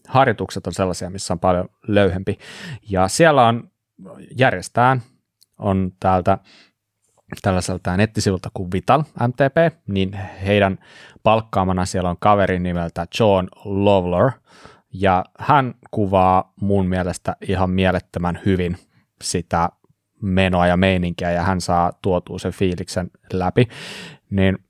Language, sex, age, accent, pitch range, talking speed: Finnish, male, 30-49, native, 95-110 Hz, 110 wpm